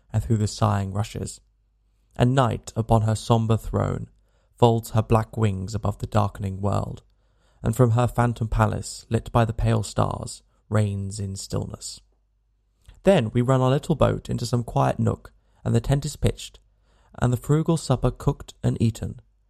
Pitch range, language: 105-120 Hz, English